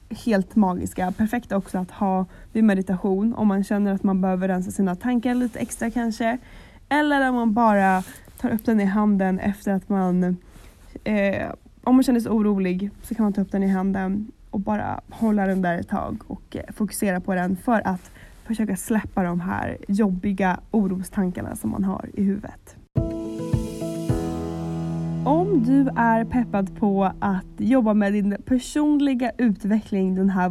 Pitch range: 190-230 Hz